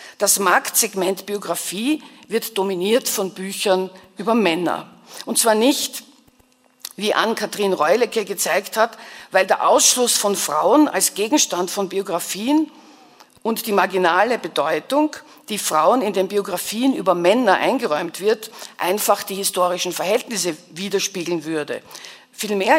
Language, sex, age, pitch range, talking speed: German, female, 50-69, 190-255 Hz, 125 wpm